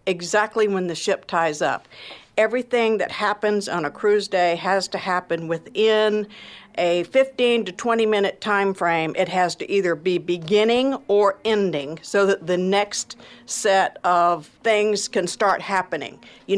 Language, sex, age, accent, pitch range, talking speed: English, female, 60-79, American, 175-220 Hz, 155 wpm